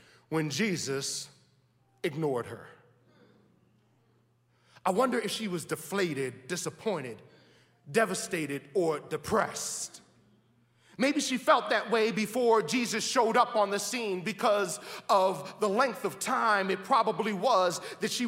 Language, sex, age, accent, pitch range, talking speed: English, male, 40-59, American, 175-230 Hz, 120 wpm